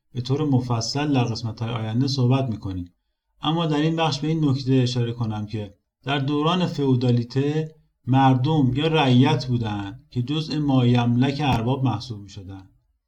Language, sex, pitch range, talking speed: Persian, male, 115-150 Hz, 145 wpm